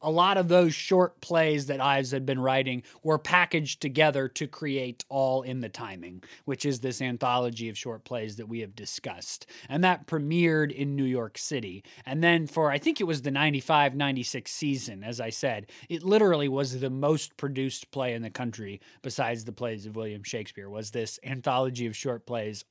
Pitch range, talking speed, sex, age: 130-155 Hz, 195 wpm, male, 20-39